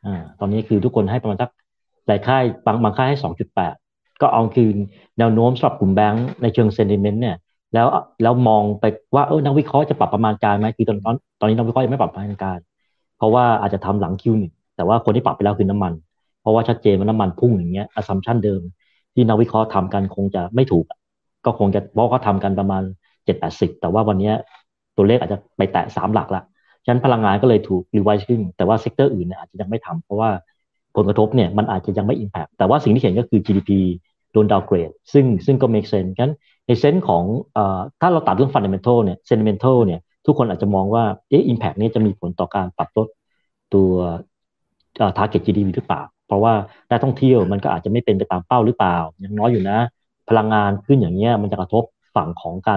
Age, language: 30-49, Thai